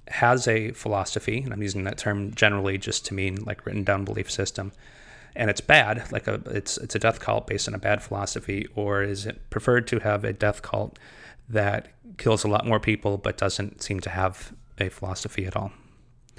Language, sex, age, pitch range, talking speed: English, male, 30-49, 100-120 Hz, 205 wpm